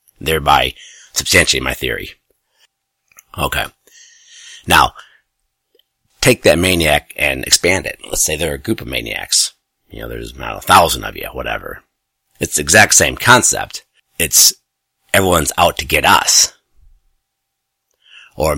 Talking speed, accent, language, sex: 130 wpm, American, English, male